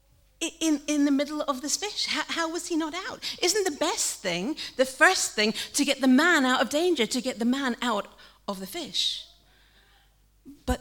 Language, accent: English, British